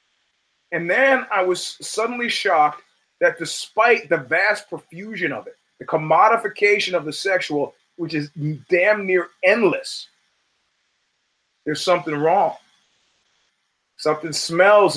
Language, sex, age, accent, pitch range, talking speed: English, male, 30-49, American, 160-210 Hz, 110 wpm